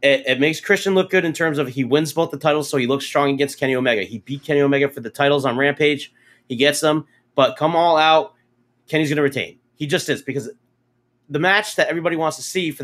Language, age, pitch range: English, 30-49, 130-160 Hz